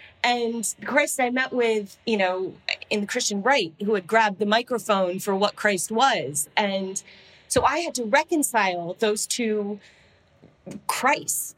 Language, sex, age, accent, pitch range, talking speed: English, female, 40-59, American, 185-240 Hz, 150 wpm